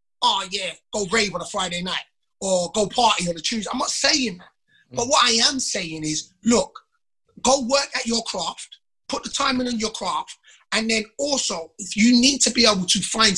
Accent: British